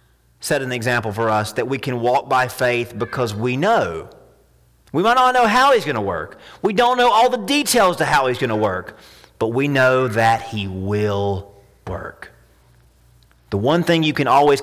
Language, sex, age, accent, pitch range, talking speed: English, male, 30-49, American, 100-155 Hz, 190 wpm